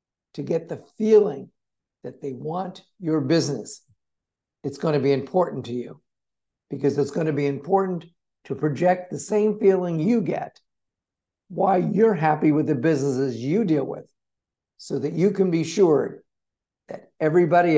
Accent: American